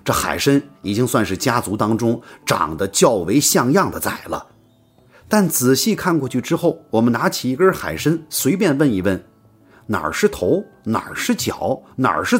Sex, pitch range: male, 110-160 Hz